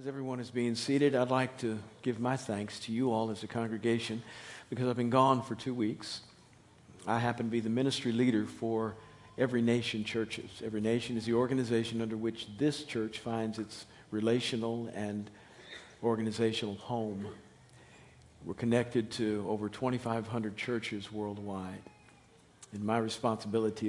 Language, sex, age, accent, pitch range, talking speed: English, male, 50-69, American, 105-120 Hz, 150 wpm